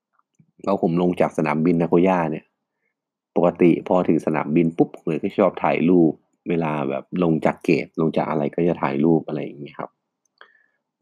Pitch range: 80-95 Hz